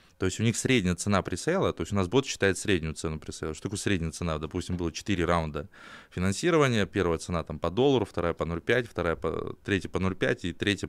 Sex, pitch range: male, 85-105 Hz